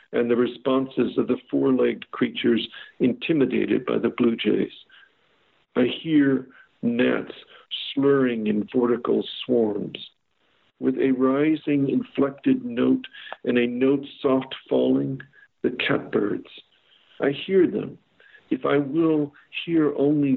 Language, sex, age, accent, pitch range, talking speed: English, male, 60-79, American, 120-150 Hz, 120 wpm